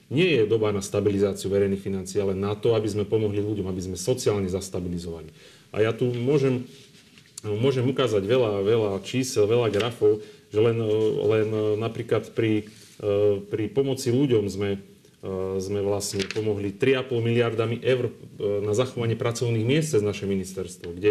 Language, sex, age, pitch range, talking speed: Slovak, male, 30-49, 100-125 Hz, 150 wpm